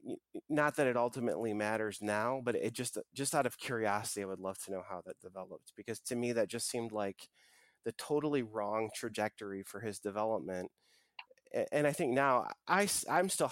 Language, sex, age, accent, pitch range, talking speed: English, male, 30-49, American, 100-125 Hz, 185 wpm